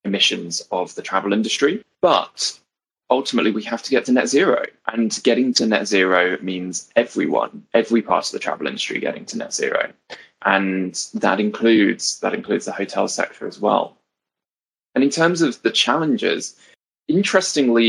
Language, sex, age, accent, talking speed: English, male, 20-39, British, 160 wpm